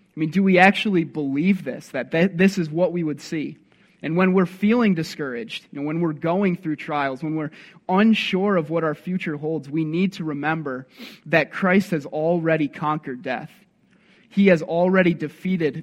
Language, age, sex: English, 20-39, male